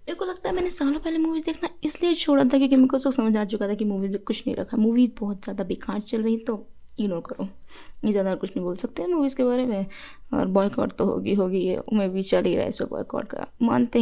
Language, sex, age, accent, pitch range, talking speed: Hindi, female, 20-39, native, 205-265 Hz, 265 wpm